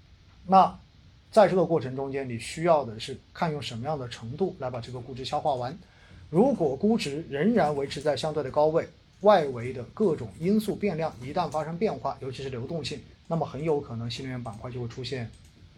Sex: male